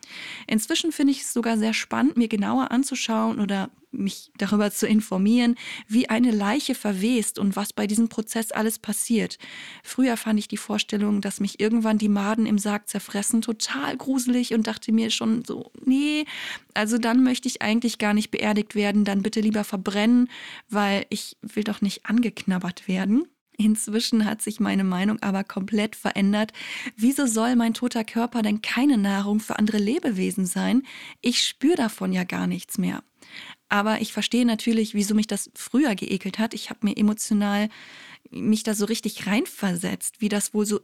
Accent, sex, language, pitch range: German, female, German, 205-235 Hz